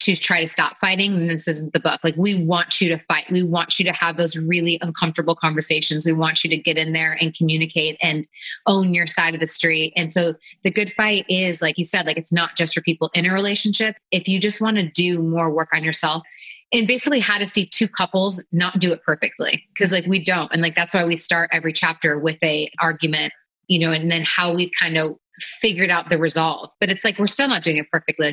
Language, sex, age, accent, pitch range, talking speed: English, female, 20-39, American, 165-190 Hz, 245 wpm